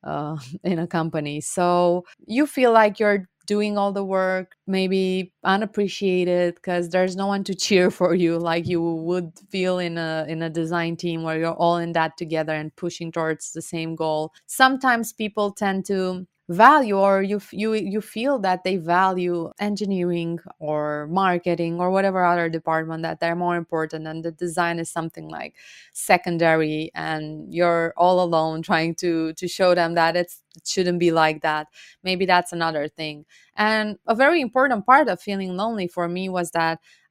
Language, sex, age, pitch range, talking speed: English, female, 20-39, 170-195 Hz, 175 wpm